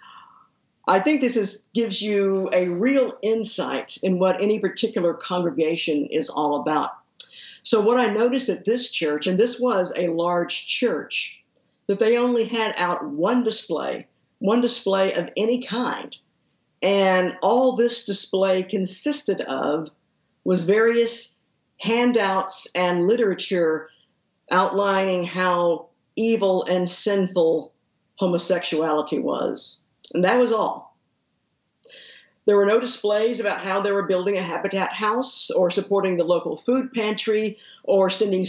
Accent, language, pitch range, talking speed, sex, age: American, English, 180-225 Hz, 130 wpm, female, 50-69